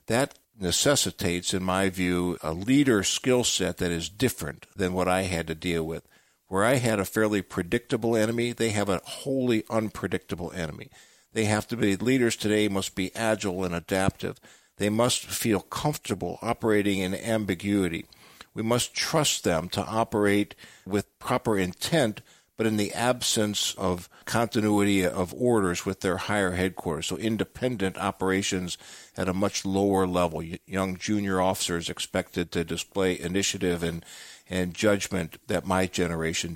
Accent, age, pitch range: American, 60-79, 90-105 Hz